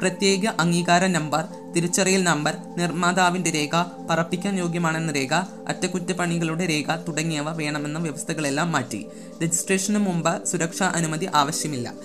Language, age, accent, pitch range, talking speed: Malayalam, 20-39, native, 145-175 Hz, 105 wpm